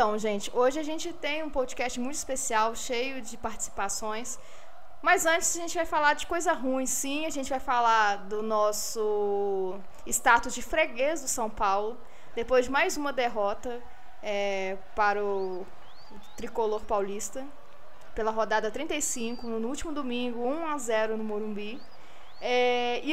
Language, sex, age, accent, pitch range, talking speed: Portuguese, female, 20-39, Brazilian, 215-280 Hz, 140 wpm